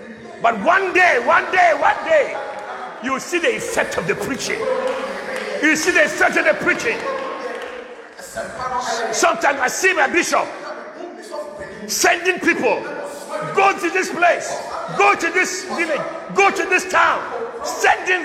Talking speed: 135 wpm